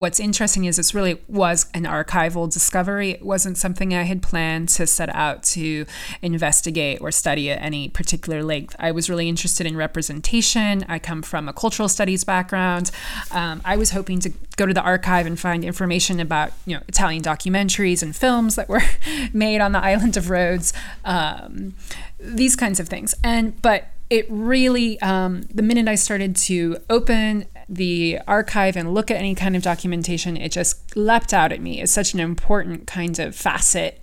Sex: female